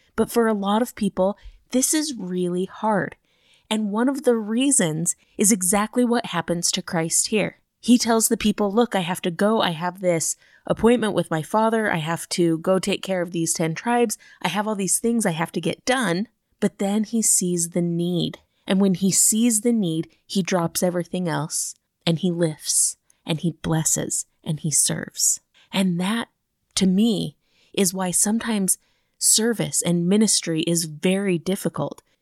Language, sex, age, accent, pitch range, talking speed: English, female, 20-39, American, 170-210 Hz, 180 wpm